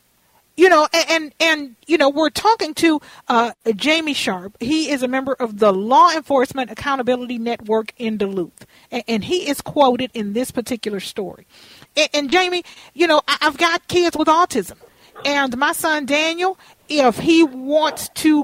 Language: English